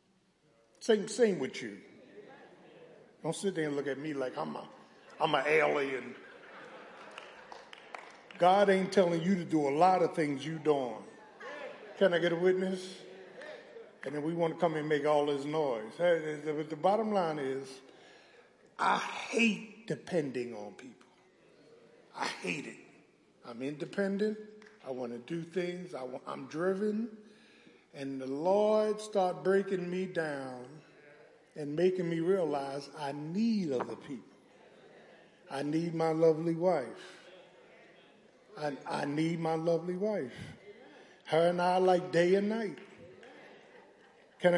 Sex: male